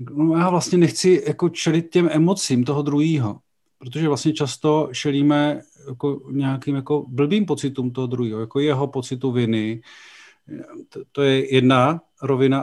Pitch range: 135-150 Hz